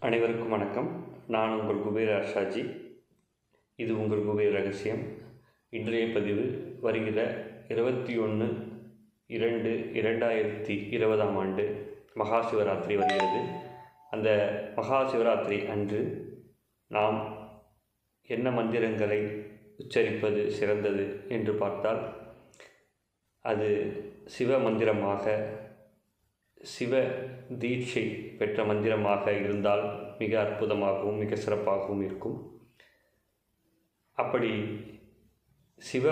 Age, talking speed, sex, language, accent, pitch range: 30-49, 75 wpm, male, Tamil, native, 105-115 Hz